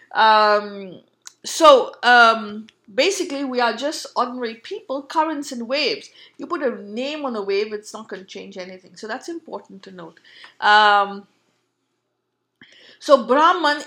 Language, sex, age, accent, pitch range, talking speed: English, female, 50-69, Indian, 225-295 Hz, 145 wpm